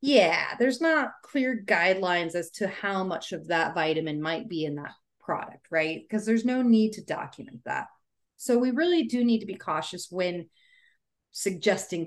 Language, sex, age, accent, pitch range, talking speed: English, female, 30-49, American, 170-225 Hz, 175 wpm